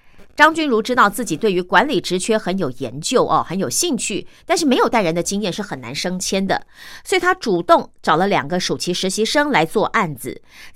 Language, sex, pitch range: Chinese, female, 175-265 Hz